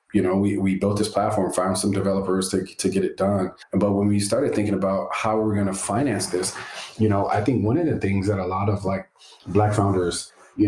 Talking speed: 240 wpm